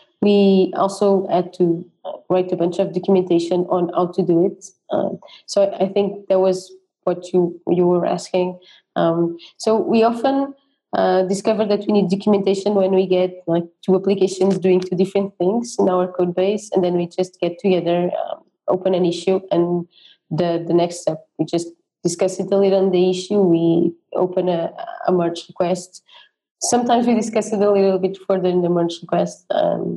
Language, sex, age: English, female, 20-39